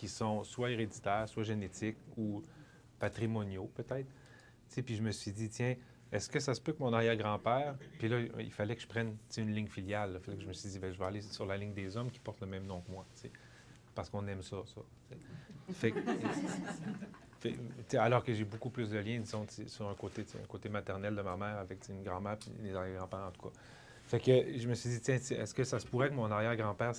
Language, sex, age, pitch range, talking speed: French, male, 30-49, 105-120 Hz, 220 wpm